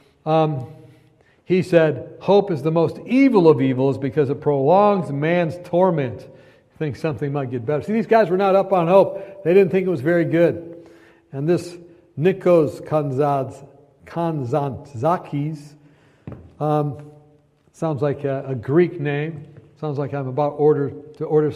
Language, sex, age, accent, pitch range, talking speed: English, male, 60-79, American, 150-200 Hz, 150 wpm